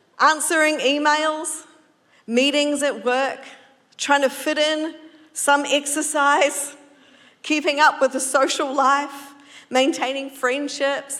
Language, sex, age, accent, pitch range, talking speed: English, female, 40-59, Australian, 260-305 Hz, 100 wpm